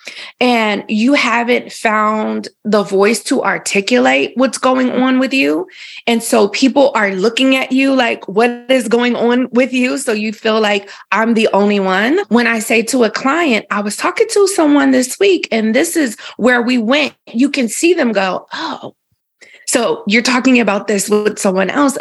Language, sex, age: English, female, 20-39